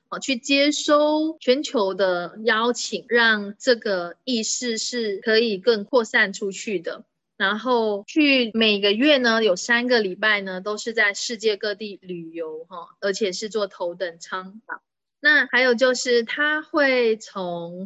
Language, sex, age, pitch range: Chinese, female, 20-39, 195-250 Hz